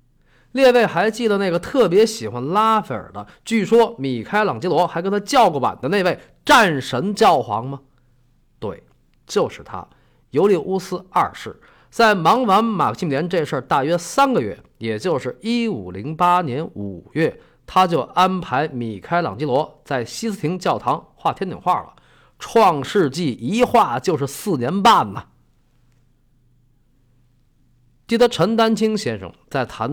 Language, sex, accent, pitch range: Chinese, male, native, 125-190 Hz